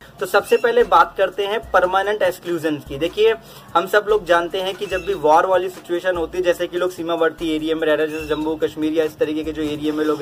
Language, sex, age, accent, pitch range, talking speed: Hindi, male, 20-39, native, 170-225 Hz, 245 wpm